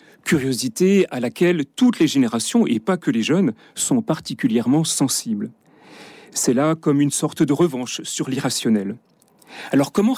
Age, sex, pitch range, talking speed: 40-59, male, 140-215 Hz, 145 wpm